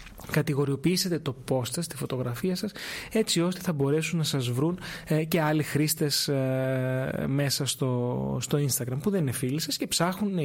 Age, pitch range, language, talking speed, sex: 20-39, 130-175 Hz, Greek, 155 wpm, male